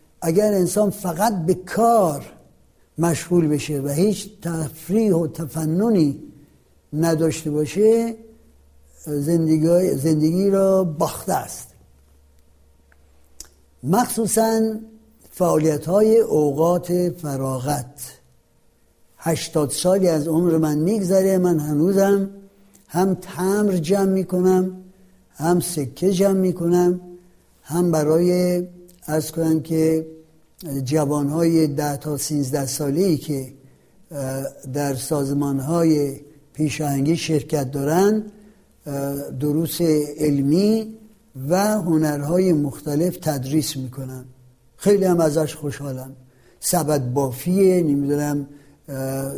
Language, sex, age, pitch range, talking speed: Persian, male, 60-79, 145-185 Hz, 85 wpm